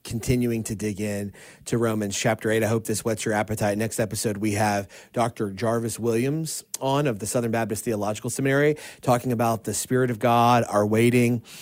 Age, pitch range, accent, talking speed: 30-49, 110-135 Hz, American, 185 wpm